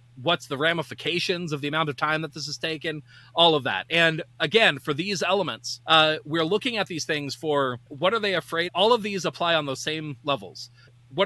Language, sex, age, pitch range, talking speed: English, male, 30-49, 130-175 Hz, 215 wpm